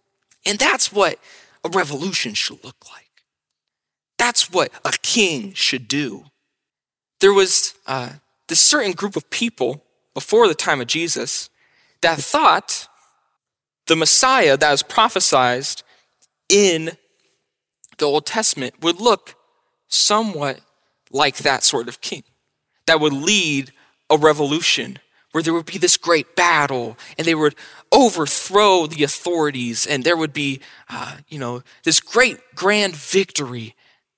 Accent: American